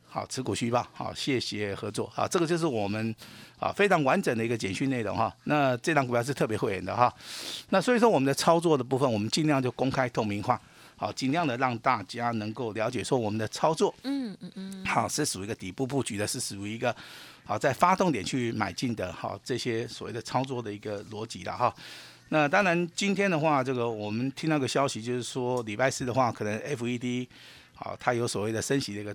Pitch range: 110-145 Hz